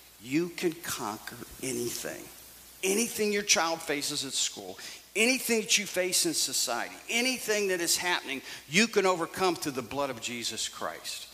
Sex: male